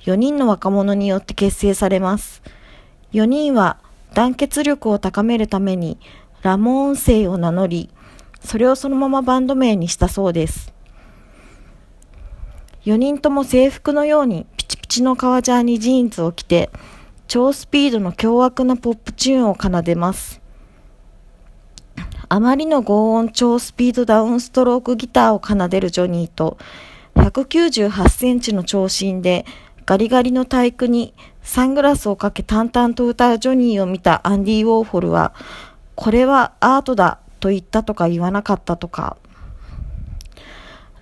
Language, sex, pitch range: Japanese, female, 195-255 Hz